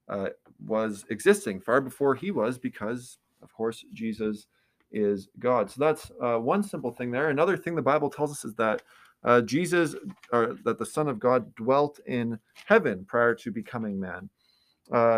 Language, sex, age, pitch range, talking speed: English, male, 20-39, 115-140 Hz, 175 wpm